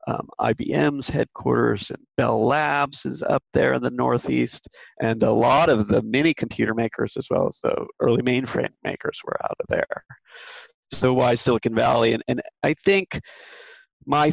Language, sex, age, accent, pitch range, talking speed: English, male, 40-59, American, 110-135 Hz, 170 wpm